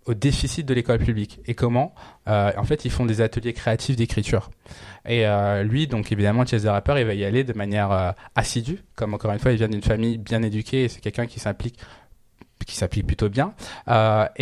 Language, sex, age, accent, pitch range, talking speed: French, male, 20-39, French, 110-130 Hz, 210 wpm